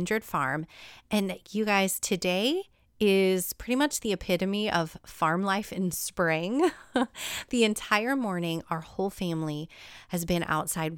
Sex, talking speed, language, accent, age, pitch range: female, 130 wpm, English, American, 30-49, 170-215 Hz